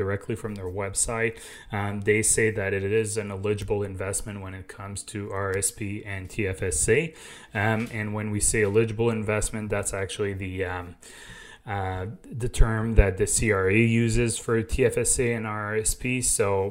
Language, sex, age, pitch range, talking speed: English, male, 20-39, 95-115 Hz, 155 wpm